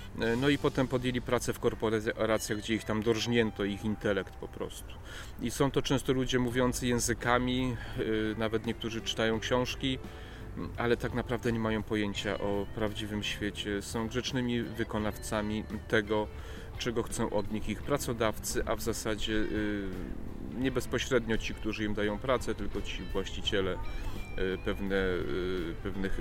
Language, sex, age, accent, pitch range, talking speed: Polish, male, 30-49, native, 100-115 Hz, 135 wpm